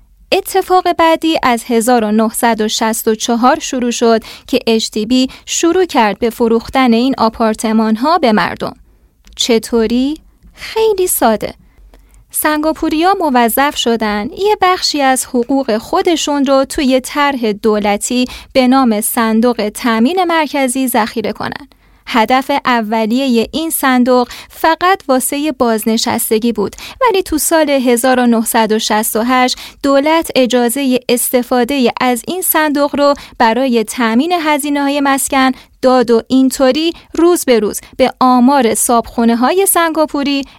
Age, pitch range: 20-39, 230-305 Hz